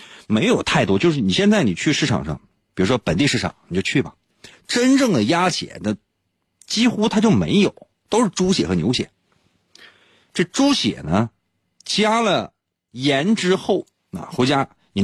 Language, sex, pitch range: Chinese, male, 120-195 Hz